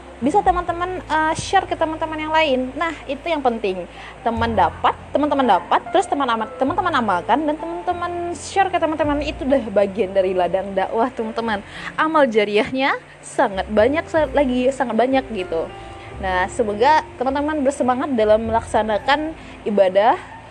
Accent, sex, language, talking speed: native, female, Indonesian, 140 wpm